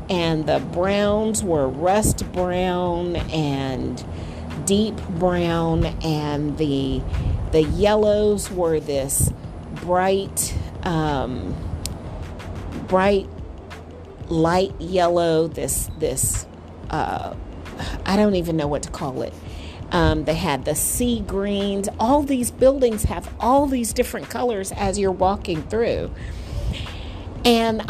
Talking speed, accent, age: 110 wpm, American, 40-59